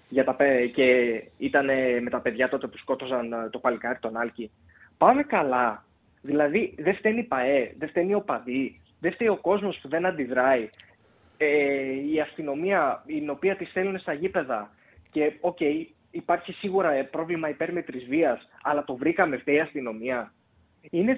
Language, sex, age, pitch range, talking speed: Greek, male, 20-39, 135-185 Hz, 145 wpm